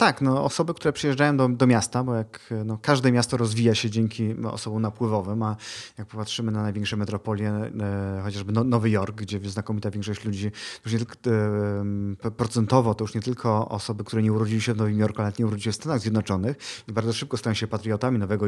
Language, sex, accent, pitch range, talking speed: Polish, male, native, 105-130 Hz, 210 wpm